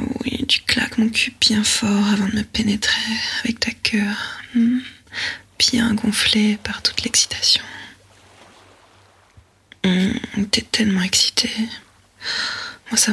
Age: 20-39